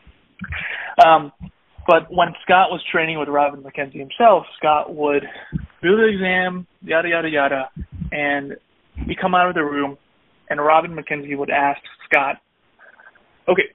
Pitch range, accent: 145-180 Hz, American